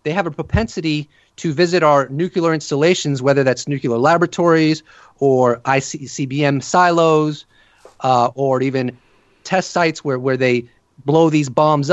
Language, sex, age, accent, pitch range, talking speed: English, male, 30-49, American, 140-185 Hz, 140 wpm